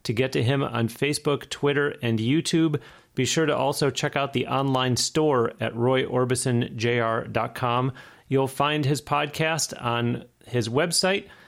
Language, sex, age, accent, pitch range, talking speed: English, male, 40-59, American, 120-145 Hz, 140 wpm